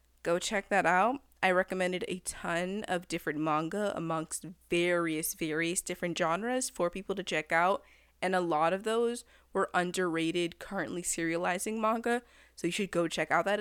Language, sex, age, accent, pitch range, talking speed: English, female, 20-39, American, 170-210 Hz, 170 wpm